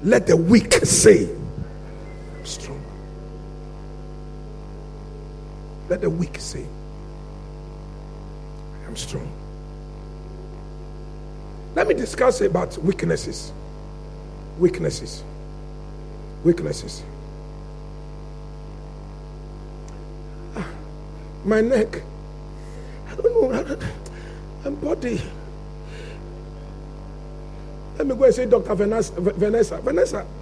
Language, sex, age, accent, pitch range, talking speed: English, male, 60-79, Nigerian, 150-210 Hz, 65 wpm